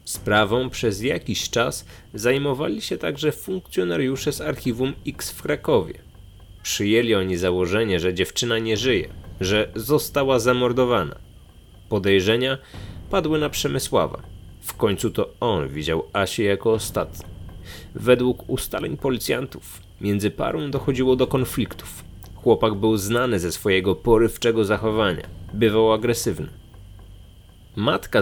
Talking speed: 115 wpm